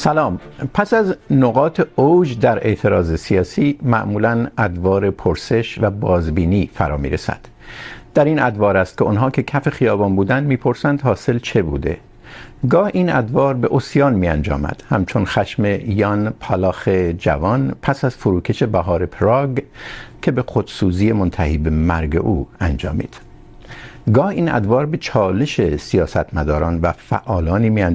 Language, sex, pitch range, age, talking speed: Urdu, male, 90-130 Hz, 60-79, 135 wpm